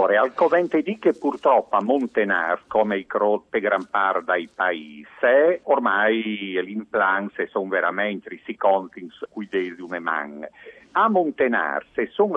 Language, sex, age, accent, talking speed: Italian, male, 50-69, native, 130 wpm